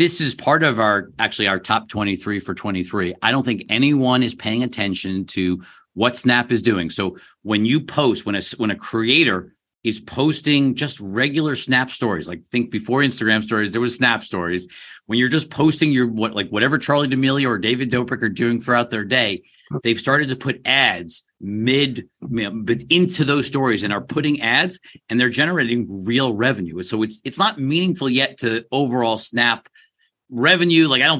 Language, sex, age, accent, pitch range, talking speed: English, male, 50-69, American, 105-130 Hz, 190 wpm